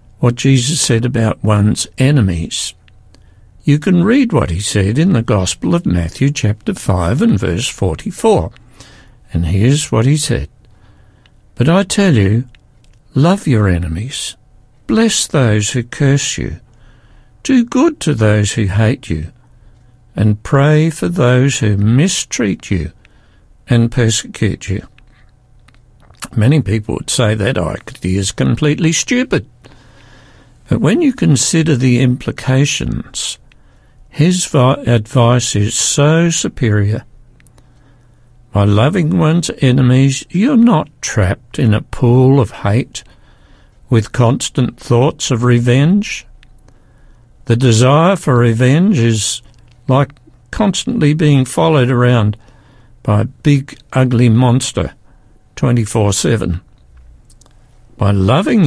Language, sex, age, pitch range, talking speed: English, male, 60-79, 110-140 Hz, 115 wpm